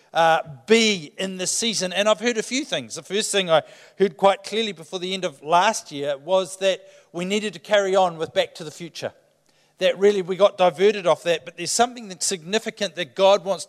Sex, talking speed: male, 225 wpm